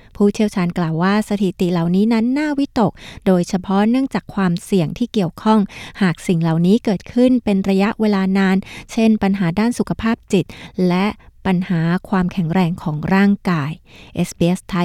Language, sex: Thai, female